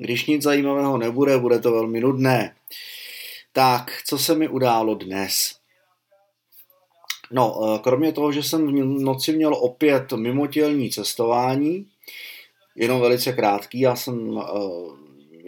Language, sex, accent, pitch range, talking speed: Czech, male, native, 120-160 Hz, 120 wpm